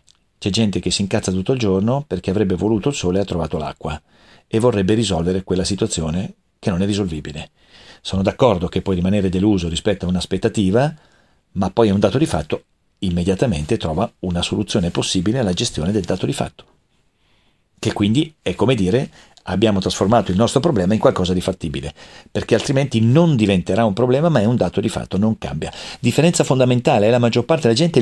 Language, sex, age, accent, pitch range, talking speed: Italian, male, 40-59, native, 95-130 Hz, 195 wpm